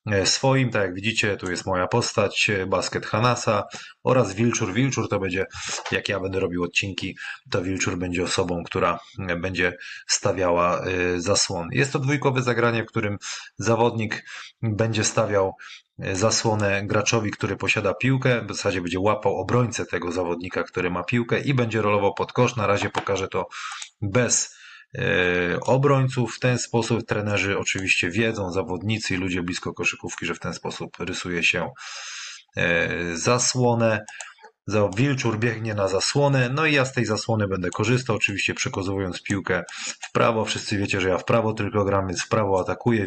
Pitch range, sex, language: 95-120 Hz, male, Polish